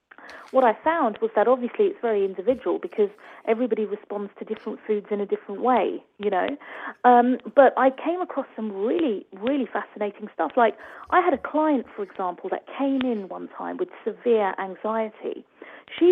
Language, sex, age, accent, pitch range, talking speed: English, female, 40-59, British, 215-275 Hz, 175 wpm